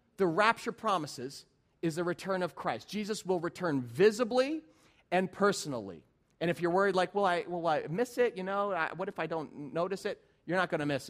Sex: male